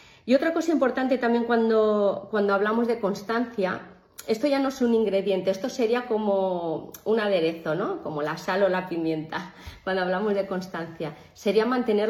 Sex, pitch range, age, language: female, 185-230 Hz, 30-49, English